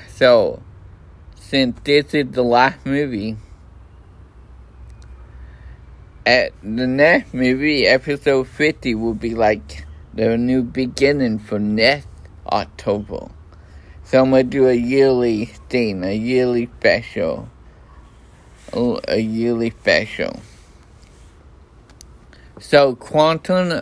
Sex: male